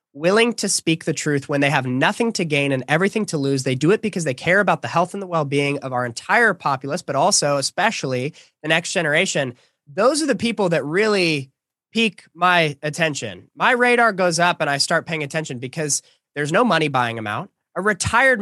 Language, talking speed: English, 210 wpm